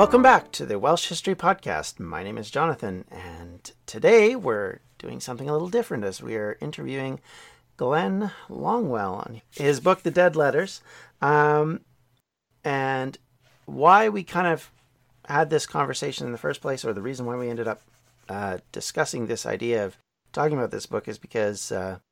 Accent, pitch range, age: American, 95-130 Hz, 40-59